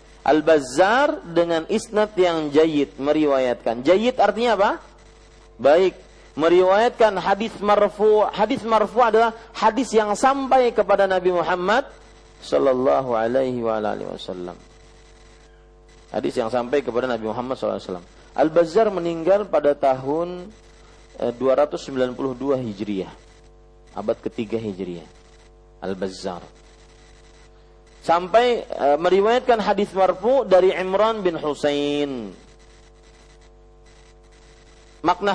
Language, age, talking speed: Malay, 40-59, 95 wpm